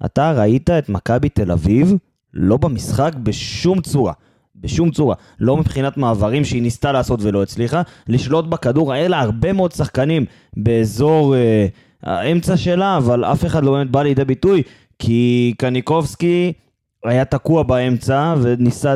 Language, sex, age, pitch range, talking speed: Hebrew, male, 20-39, 115-150 Hz, 140 wpm